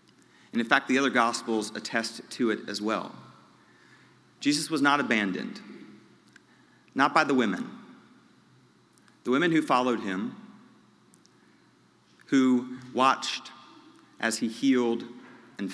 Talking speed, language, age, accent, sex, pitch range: 115 wpm, English, 40-59, American, male, 110-130 Hz